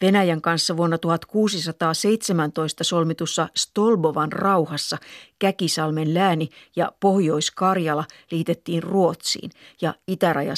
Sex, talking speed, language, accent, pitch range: female, 85 wpm, Finnish, native, 170-195 Hz